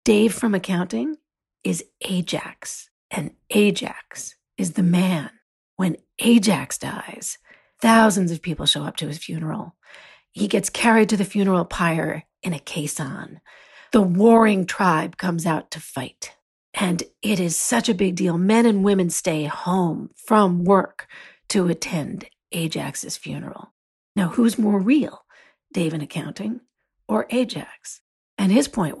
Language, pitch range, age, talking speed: English, 180-230 Hz, 40-59, 140 wpm